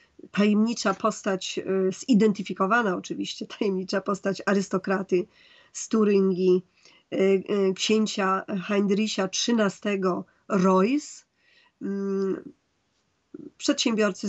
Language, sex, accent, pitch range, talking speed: Polish, female, native, 190-215 Hz, 60 wpm